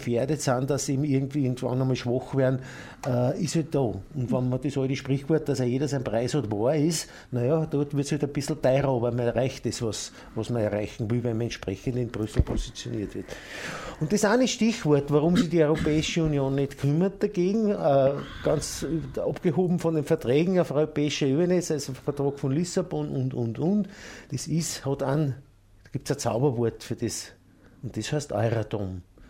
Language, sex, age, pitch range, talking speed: German, male, 50-69, 120-155 Hz, 195 wpm